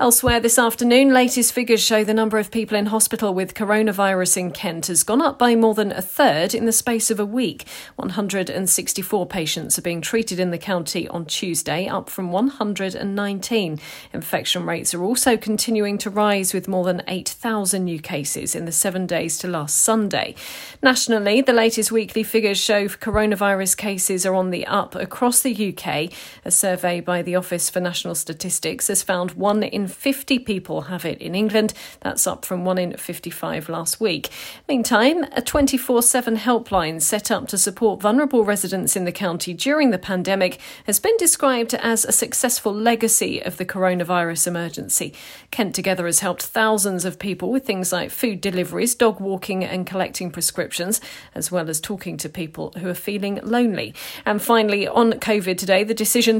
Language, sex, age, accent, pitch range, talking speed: English, female, 40-59, British, 185-225 Hz, 175 wpm